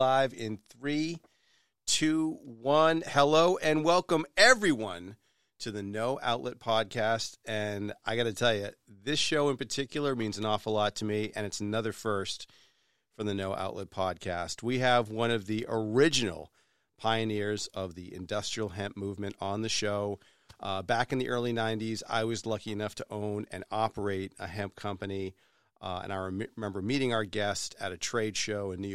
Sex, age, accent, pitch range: male, 40-59, American, 100-115 Hz